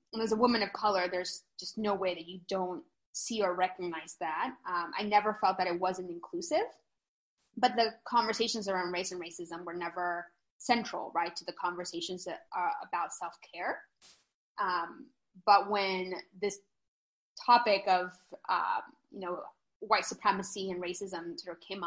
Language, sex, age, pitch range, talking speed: English, female, 20-39, 180-225 Hz, 160 wpm